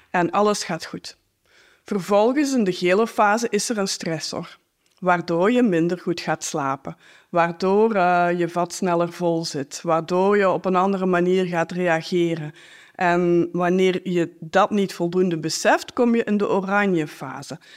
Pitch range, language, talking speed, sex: 175-215 Hz, Dutch, 160 wpm, female